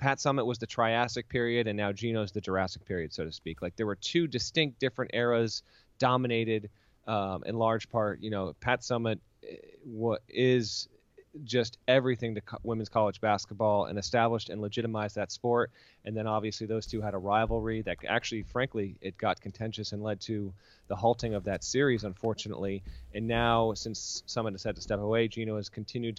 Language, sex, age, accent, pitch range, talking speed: English, male, 30-49, American, 105-120 Hz, 180 wpm